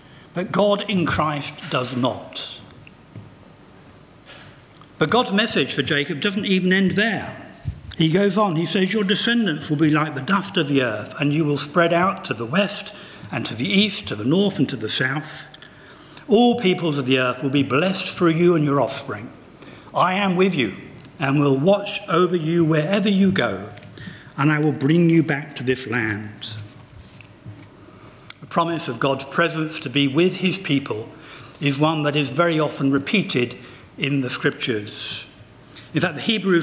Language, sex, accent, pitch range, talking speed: English, male, British, 135-180 Hz, 175 wpm